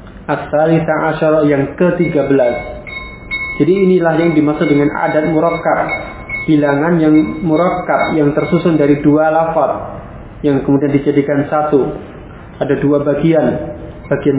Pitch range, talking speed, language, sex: 140-160 Hz, 110 wpm, Indonesian, male